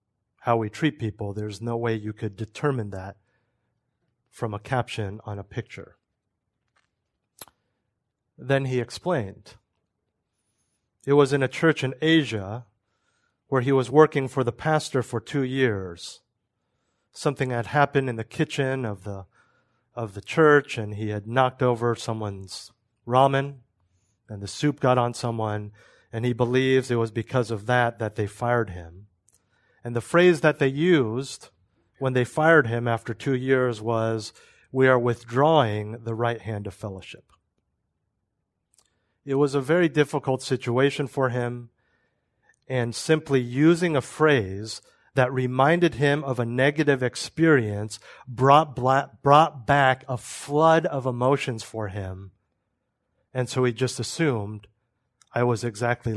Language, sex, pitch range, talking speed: English, male, 110-135 Hz, 140 wpm